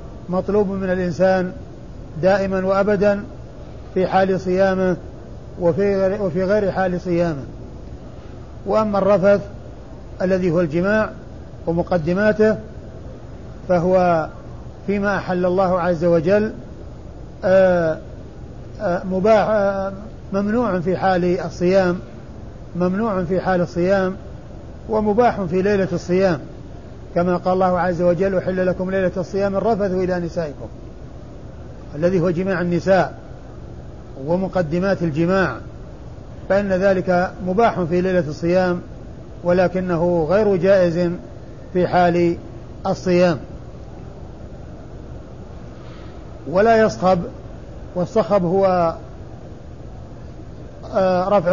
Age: 50-69